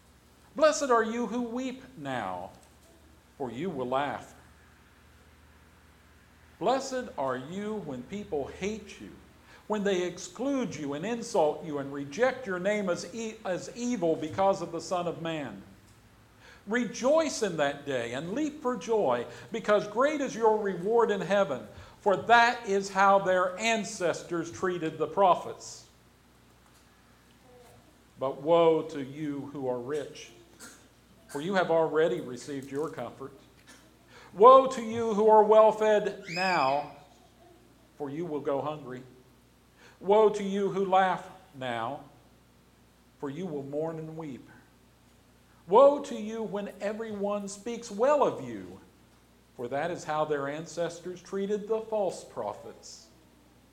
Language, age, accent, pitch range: English, 50-69, American, 135-215 Hz